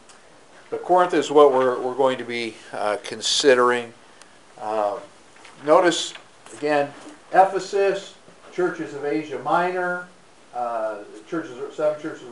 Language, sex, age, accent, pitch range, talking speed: English, male, 50-69, American, 125-180 Hz, 120 wpm